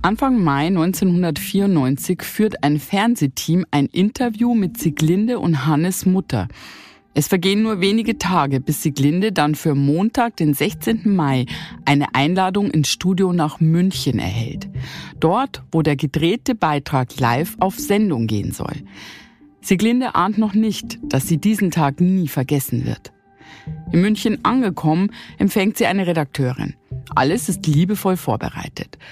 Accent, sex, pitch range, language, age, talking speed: German, female, 135-195 Hz, German, 50-69, 135 wpm